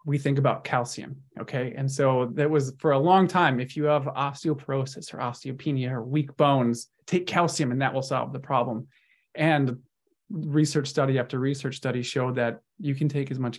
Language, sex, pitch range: English, male, 130-150 Hz